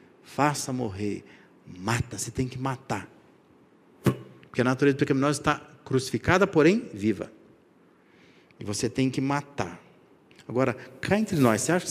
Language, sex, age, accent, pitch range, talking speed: Portuguese, male, 50-69, Brazilian, 120-150 Hz, 135 wpm